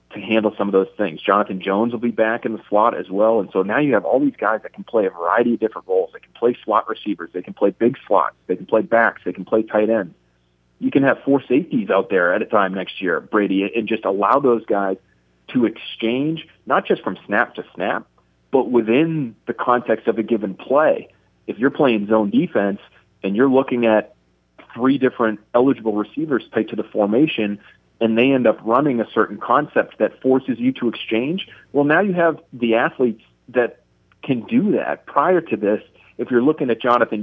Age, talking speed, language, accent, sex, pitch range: 40-59, 215 wpm, English, American, male, 100-125 Hz